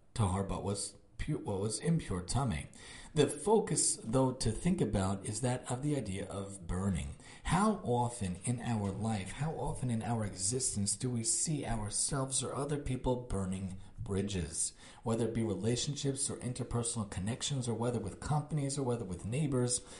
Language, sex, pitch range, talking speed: English, male, 110-140 Hz, 165 wpm